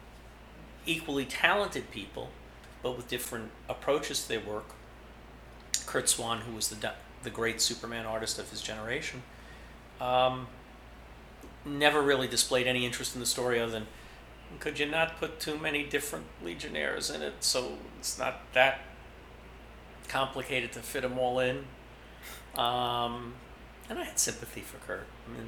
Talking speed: 150 wpm